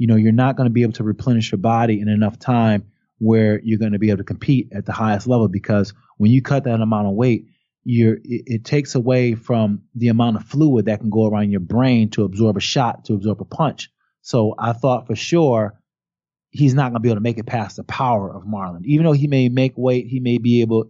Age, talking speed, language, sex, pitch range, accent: 30-49, 250 wpm, English, male, 110-140 Hz, American